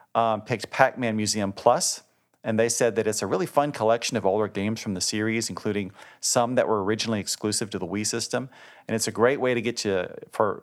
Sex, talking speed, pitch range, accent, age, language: male, 220 wpm, 100-115 Hz, American, 40-59, English